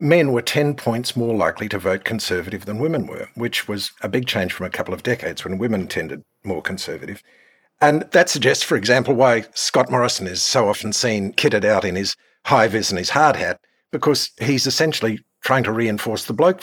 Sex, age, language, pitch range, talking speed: male, 50-69, English, 110-145 Hz, 200 wpm